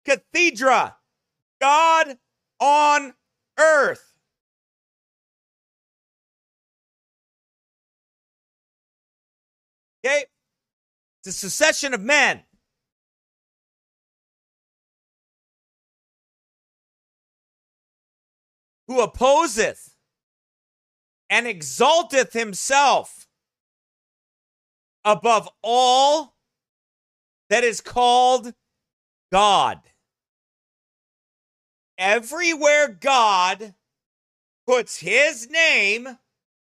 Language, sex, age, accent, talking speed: English, male, 40-59, American, 45 wpm